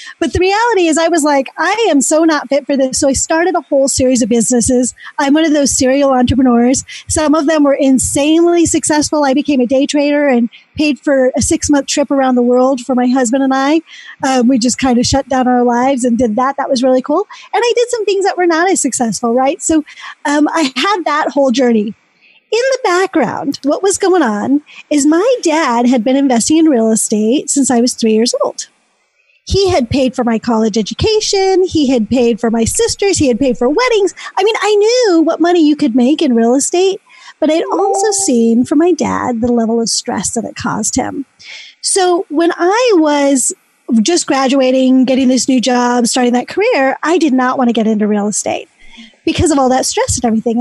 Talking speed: 215 wpm